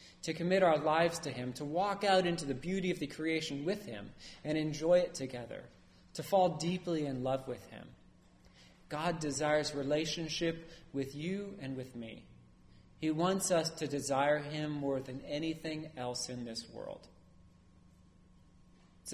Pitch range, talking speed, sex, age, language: 125-175 Hz, 155 wpm, male, 30-49, English